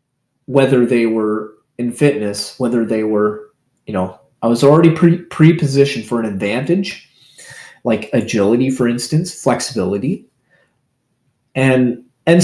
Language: English